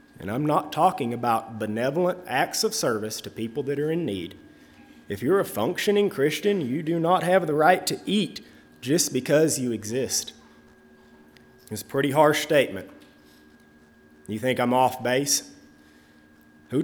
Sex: male